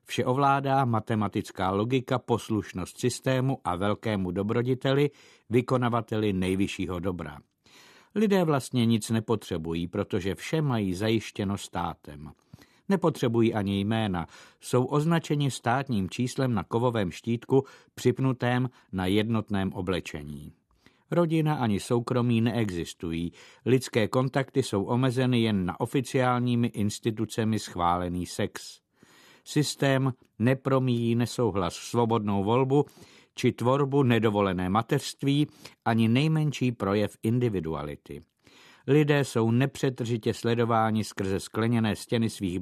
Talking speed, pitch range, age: 100 wpm, 100-130 Hz, 50-69